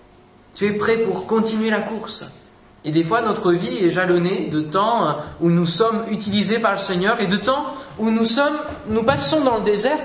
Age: 20-39